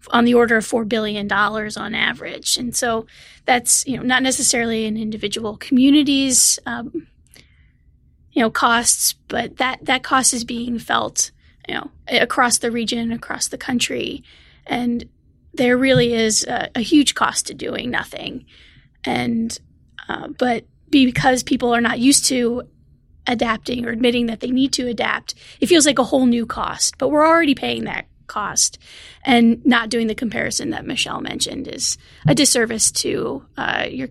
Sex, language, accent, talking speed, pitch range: female, English, American, 165 wpm, 230-265 Hz